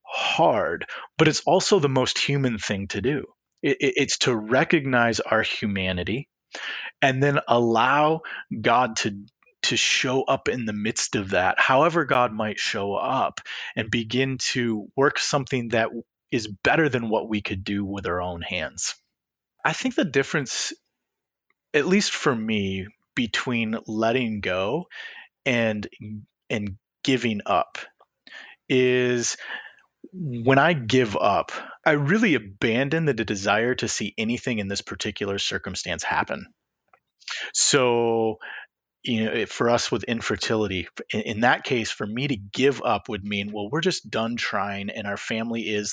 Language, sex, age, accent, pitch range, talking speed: English, male, 30-49, American, 110-145 Hz, 145 wpm